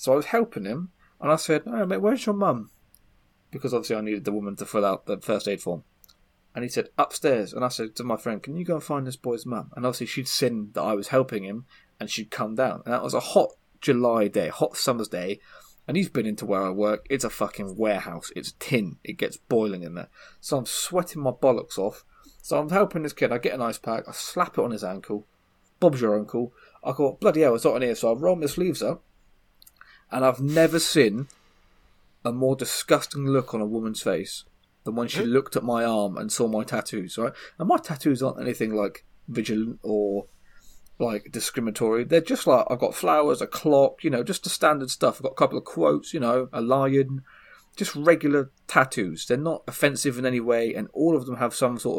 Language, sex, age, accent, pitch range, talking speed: English, male, 20-39, British, 110-150 Hz, 230 wpm